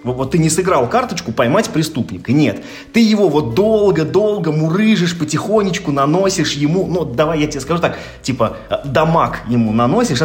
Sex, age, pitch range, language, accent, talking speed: male, 20-39, 115-160 Hz, Russian, native, 150 wpm